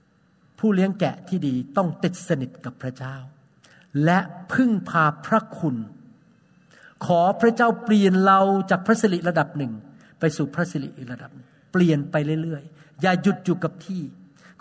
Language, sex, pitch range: Thai, male, 135-185 Hz